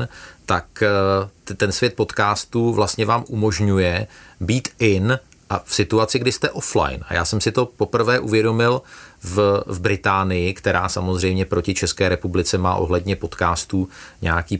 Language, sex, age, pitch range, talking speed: Czech, male, 40-59, 90-105 Hz, 135 wpm